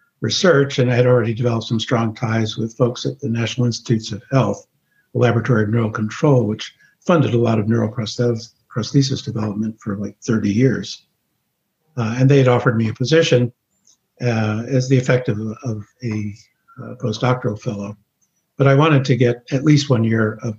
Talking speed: 180 wpm